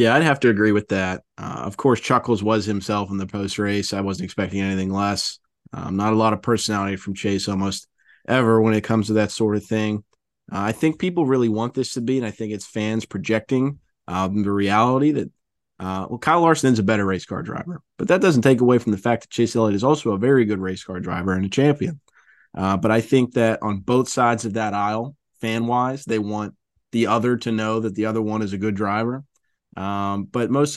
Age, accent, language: 20-39, American, English